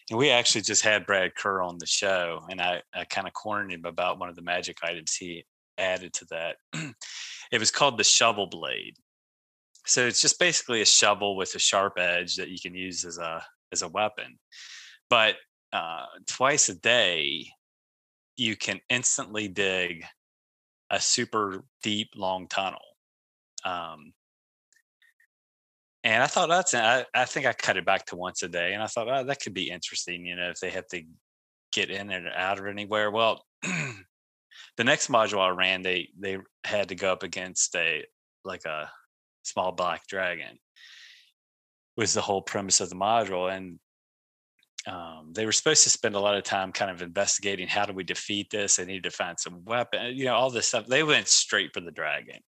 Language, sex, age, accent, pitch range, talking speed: English, male, 20-39, American, 85-100 Hz, 185 wpm